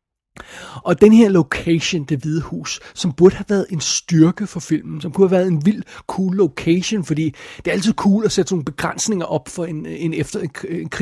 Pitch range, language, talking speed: 155-195 Hz, Danish, 200 wpm